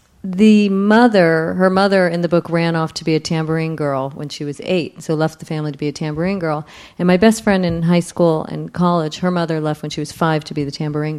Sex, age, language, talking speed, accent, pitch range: female, 40-59, English, 250 wpm, American, 155-185 Hz